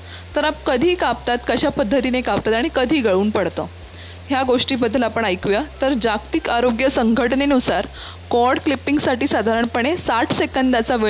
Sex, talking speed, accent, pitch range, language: female, 135 wpm, Indian, 180-265 Hz, English